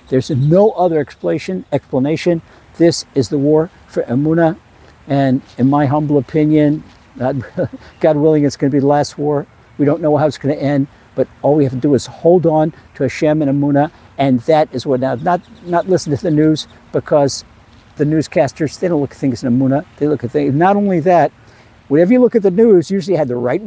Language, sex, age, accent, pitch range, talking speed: English, male, 60-79, American, 130-175 Hz, 205 wpm